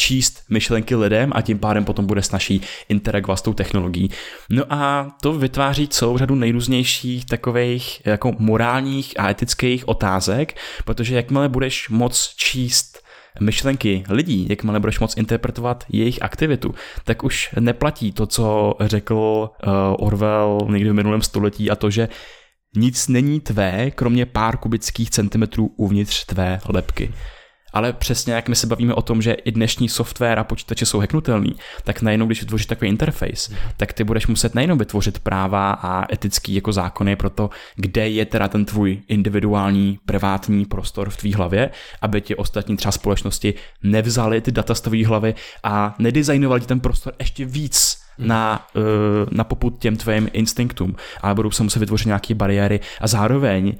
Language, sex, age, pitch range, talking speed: Czech, male, 20-39, 100-120 Hz, 155 wpm